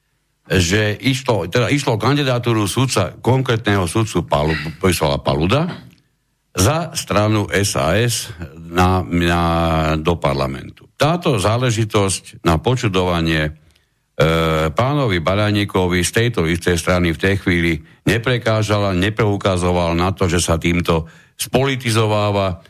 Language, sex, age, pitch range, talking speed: Slovak, male, 60-79, 90-120 Hz, 100 wpm